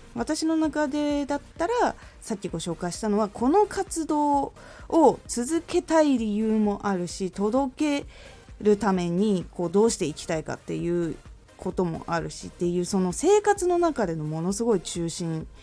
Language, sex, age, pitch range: Japanese, female, 20-39, 180-290 Hz